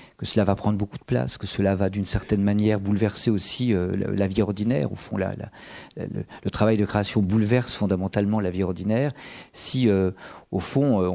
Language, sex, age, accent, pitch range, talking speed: French, male, 40-59, French, 95-115 Hz, 200 wpm